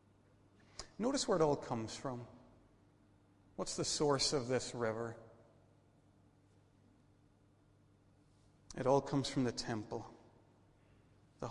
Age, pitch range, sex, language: 40-59, 105-145 Hz, male, English